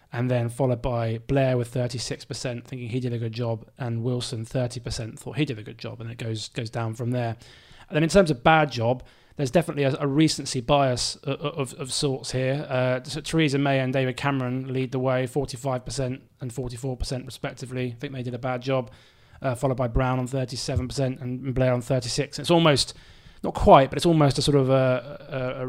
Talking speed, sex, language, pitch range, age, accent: 215 wpm, male, English, 120-140 Hz, 20-39, British